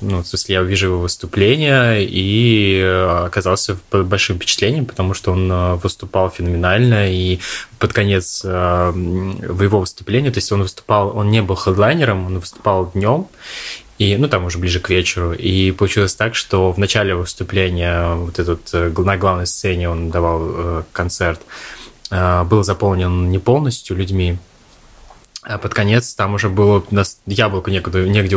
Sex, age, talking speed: male, 20-39, 150 wpm